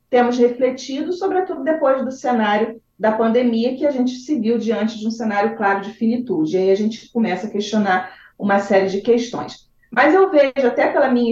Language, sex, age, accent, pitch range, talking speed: Portuguese, female, 40-59, Brazilian, 195-280 Hz, 195 wpm